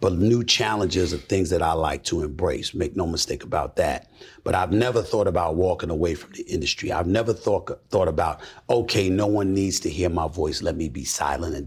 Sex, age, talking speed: male, 40-59, 220 wpm